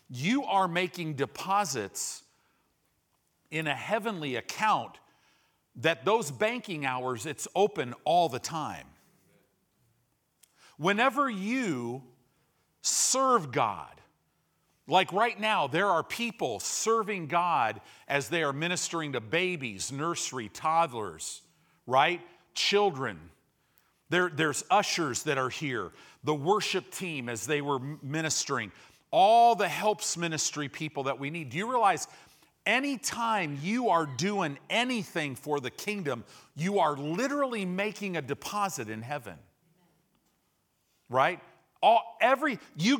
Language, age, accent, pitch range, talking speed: English, 50-69, American, 150-220 Hz, 115 wpm